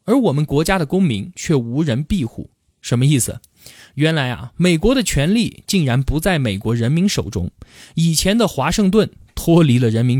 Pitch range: 125-195 Hz